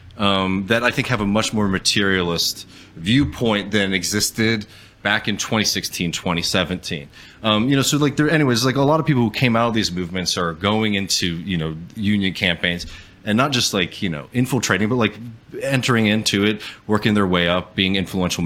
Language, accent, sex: English, American, male